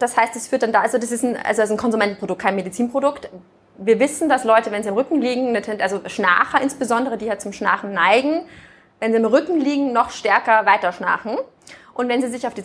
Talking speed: 230 wpm